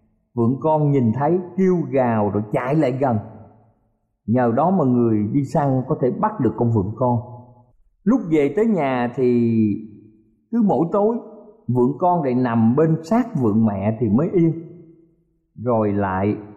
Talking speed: 160 wpm